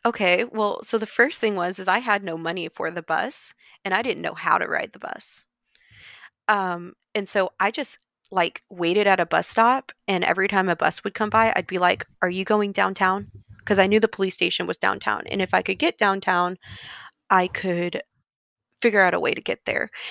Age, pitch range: 20-39, 175-215 Hz